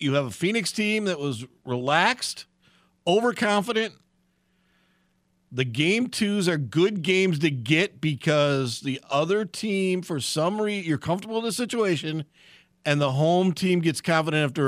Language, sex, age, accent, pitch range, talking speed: English, male, 50-69, American, 140-190 Hz, 145 wpm